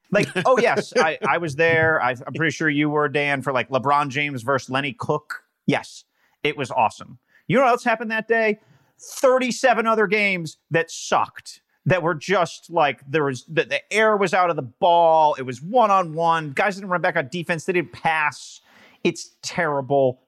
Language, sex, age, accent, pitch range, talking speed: English, male, 30-49, American, 150-200 Hz, 200 wpm